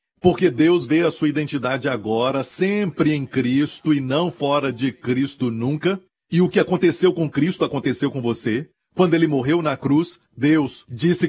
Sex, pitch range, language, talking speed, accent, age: male, 135-165 Hz, Portuguese, 170 wpm, Brazilian, 40-59